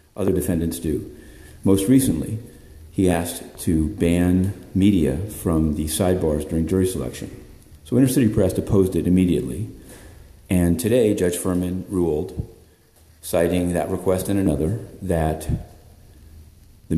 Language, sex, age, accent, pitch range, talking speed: English, male, 50-69, American, 85-110 Hz, 125 wpm